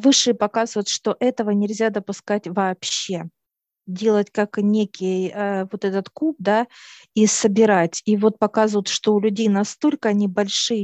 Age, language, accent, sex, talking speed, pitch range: 40-59, Russian, native, female, 140 wpm, 195-230 Hz